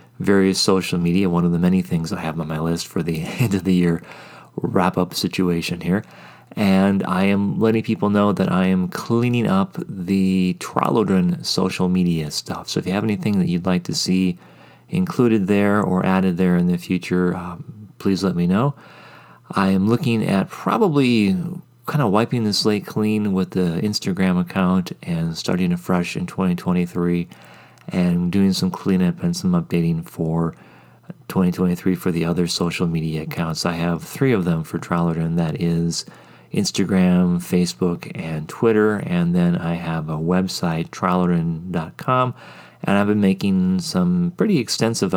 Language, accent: English, American